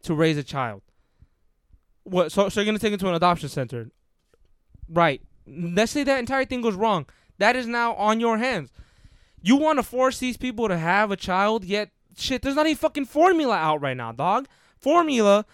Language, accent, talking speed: English, American, 200 wpm